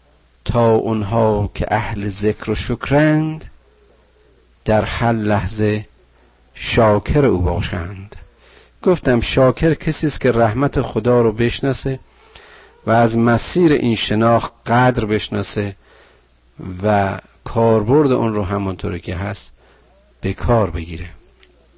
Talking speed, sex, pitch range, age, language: 105 wpm, male, 95-145 Hz, 50-69, Persian